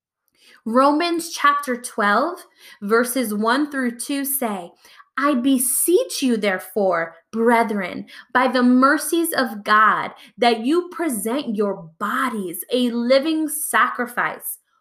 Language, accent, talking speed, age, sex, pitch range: English, American, 105 wpm, 20-39, female, 230-295 Hz